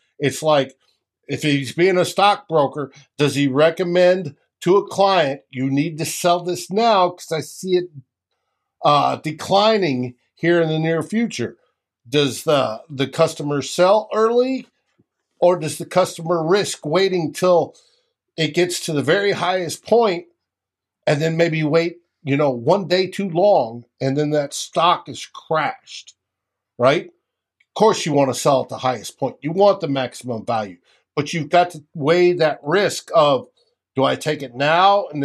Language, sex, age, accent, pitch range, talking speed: English, male, 50-69, American, 135-180 Hz, 165 wpm